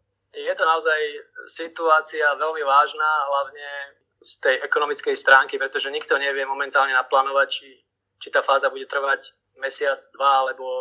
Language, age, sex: Slovak, 20-39, male